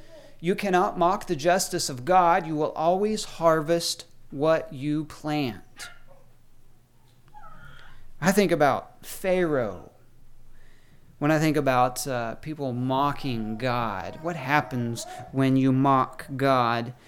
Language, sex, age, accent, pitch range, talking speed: English, male, 40-59, American, 140-195 Hz, 110 wpm